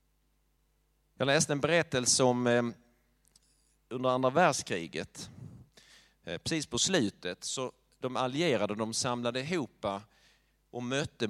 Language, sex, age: Swedish, male, 30-49